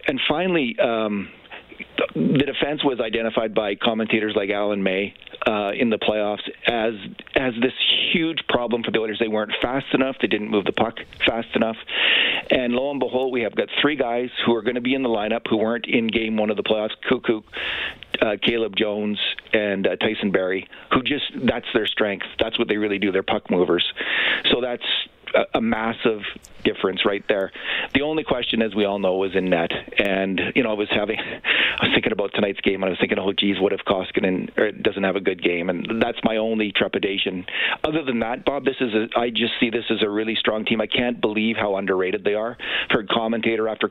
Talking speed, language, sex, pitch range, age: 210 wpm, English, male, 105-120 Hz, 40-59